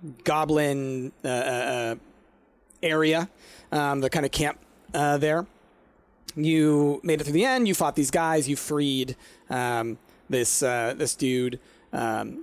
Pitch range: 130-165 Hz